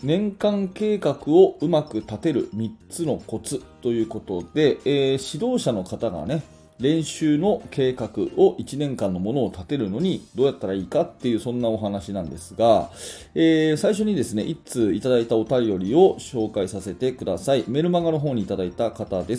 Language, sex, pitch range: Japanese, male, 100-150 Hz